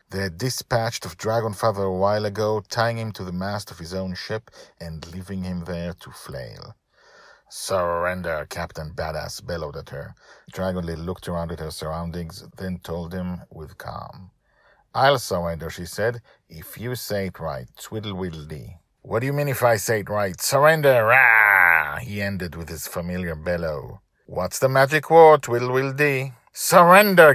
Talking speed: 160 wpm